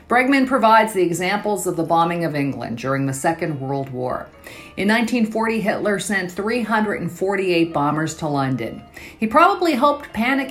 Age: 50-69